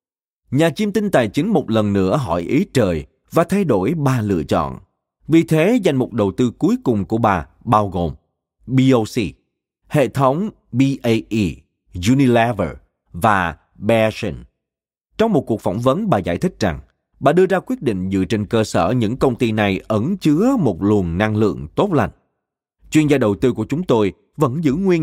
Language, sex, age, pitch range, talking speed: Vietnamese, male, 30-49, 95-140 Hz, 180 wpm